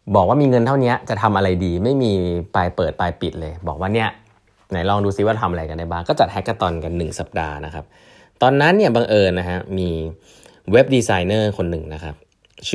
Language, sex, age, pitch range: Thai, male, 20-39, 85-110 Hz